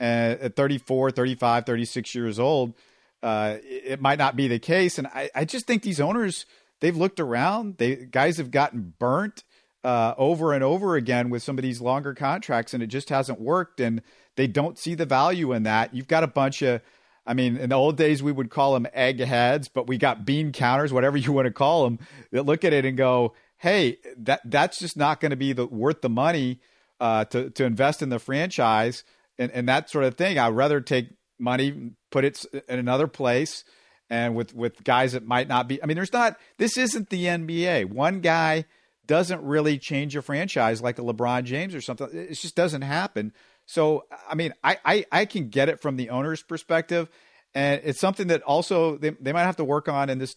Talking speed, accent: 210 wpm, American